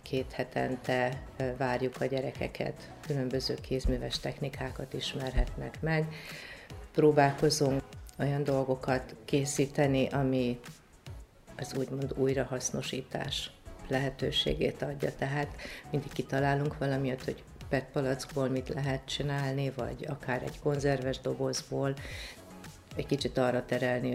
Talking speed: 95 wpm